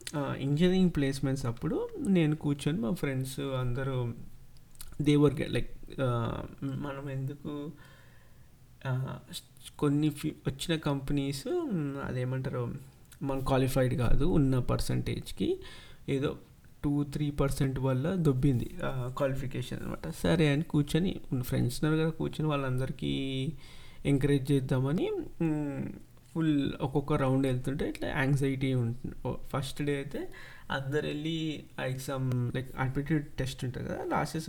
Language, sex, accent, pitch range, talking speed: Telugu, male, native, 130-150 Hz, 105 wpm